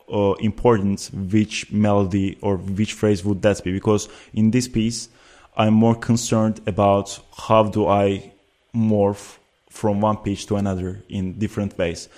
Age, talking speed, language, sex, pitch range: 20-39, 150 wpm, English, male, 95-105 Hz